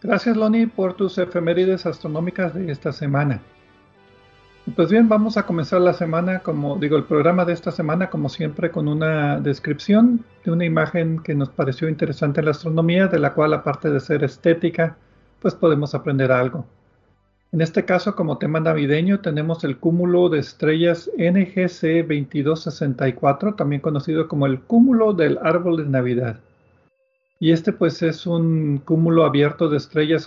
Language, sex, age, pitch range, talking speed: Spanish, male, 50-69, 145-180 Hz, 160 wpm